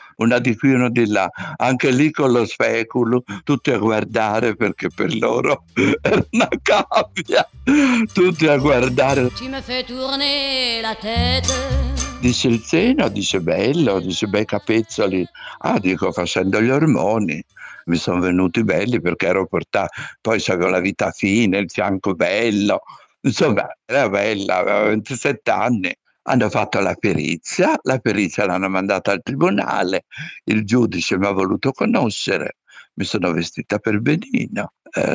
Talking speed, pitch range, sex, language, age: 135 wpm, 100-145 Hz, male, Italian, 60-79